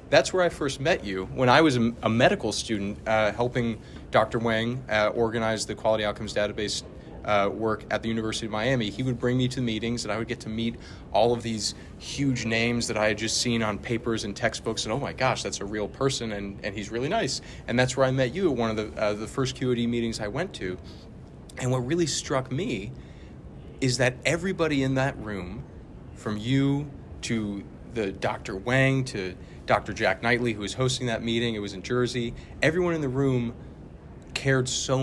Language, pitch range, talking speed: English, 105-130 Hz, 210 wpm